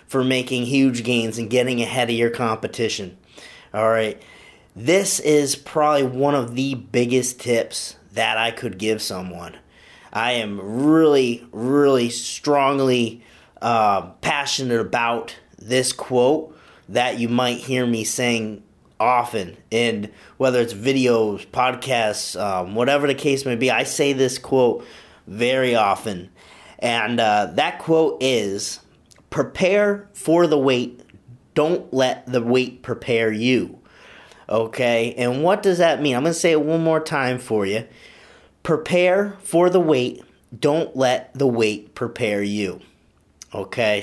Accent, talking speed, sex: American, 135 wpm, male